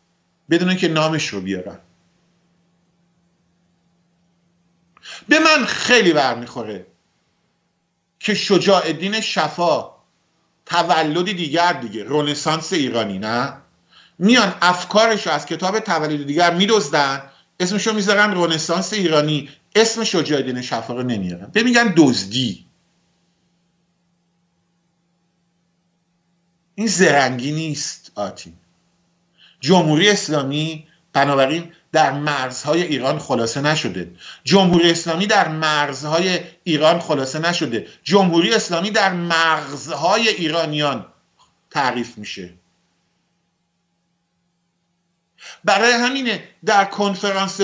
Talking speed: 90 wpm